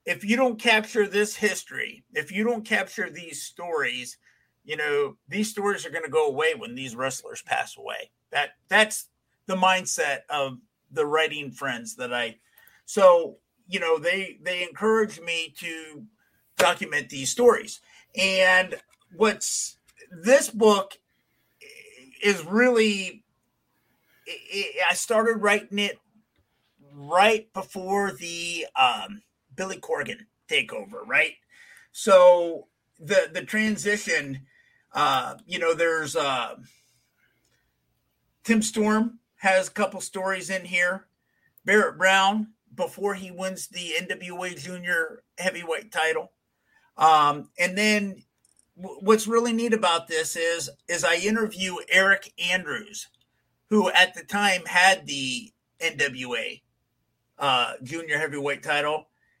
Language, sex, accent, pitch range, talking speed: English, male, American, 165-215 Hz, 120 wpm